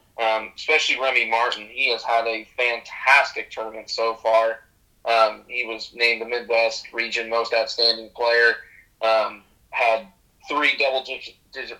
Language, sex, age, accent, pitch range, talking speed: English, male, 20-39, American, 110-120 Hz, 130 wpm